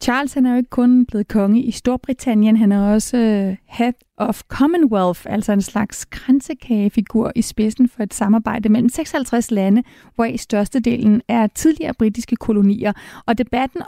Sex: female